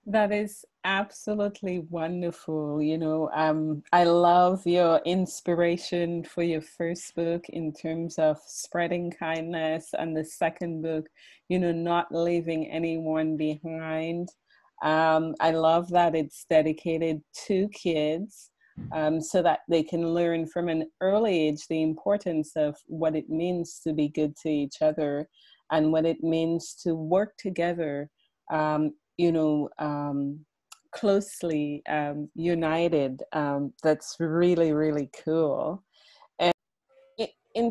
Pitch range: 160-180 Hz